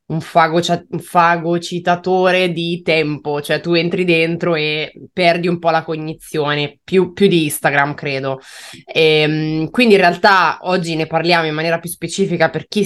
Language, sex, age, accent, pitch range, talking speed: Italian, female, 20-39, native, 155-180 Hz, 150 wpm